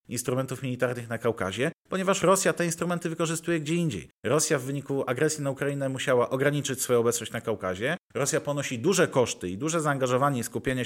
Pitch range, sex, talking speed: 125-160 Hz, male, 175 wpm